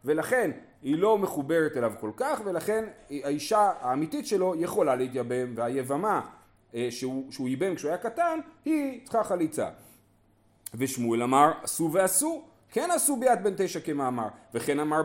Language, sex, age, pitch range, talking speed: Hebrew, male, 40-59, 125-210 Hz, 135 wpm